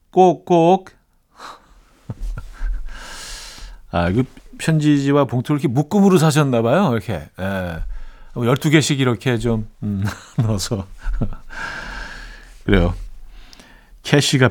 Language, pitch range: Korean, 115-160 Hz